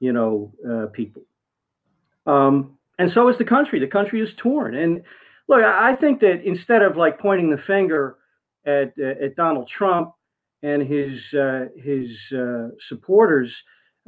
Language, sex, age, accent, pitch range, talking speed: English, male, 50-69, American, 140-190 Hz, 155 wpm